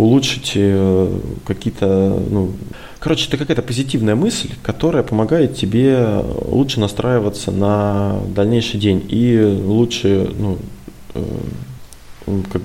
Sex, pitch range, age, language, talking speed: male, 100-120 Hz, 20-39, Russian, 95 wpm